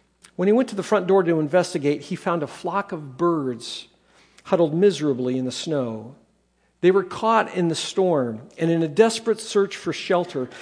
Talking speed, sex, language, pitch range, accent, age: 185 wpm, male, English, 145-195 Hz, American, 50-69